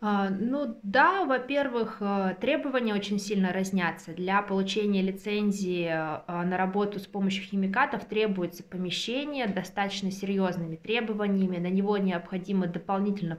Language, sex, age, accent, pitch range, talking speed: Russian, female, 20-39, native, 185-220 Hz, 110 wpm